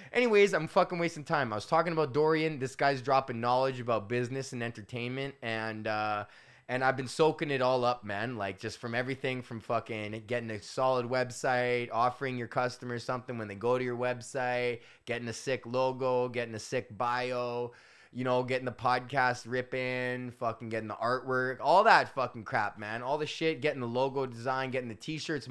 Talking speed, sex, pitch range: 190 wpm, male, 115-150 Hz